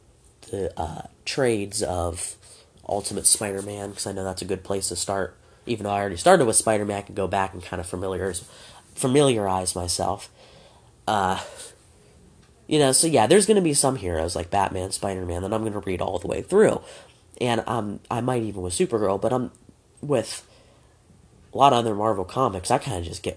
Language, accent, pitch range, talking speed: English, American, 95-125 Hz, 205 wpm